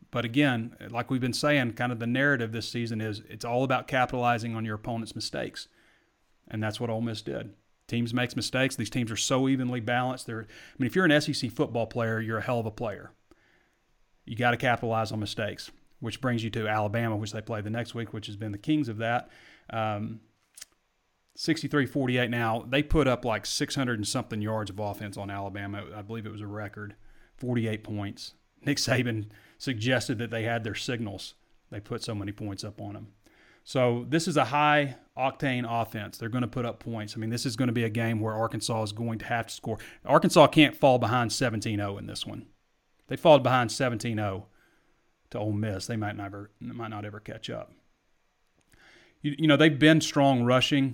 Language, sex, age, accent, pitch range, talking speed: English, male, 30-49, American, 110-130 Hz, 200 wpm